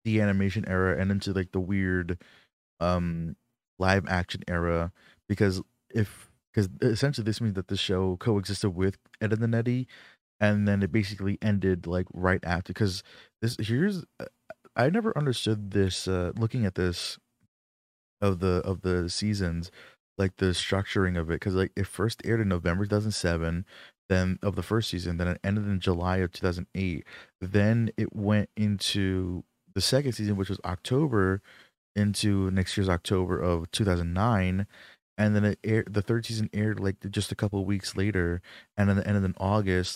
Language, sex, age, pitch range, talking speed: English, male, 20-39, 90-105 Hz, 170 wpm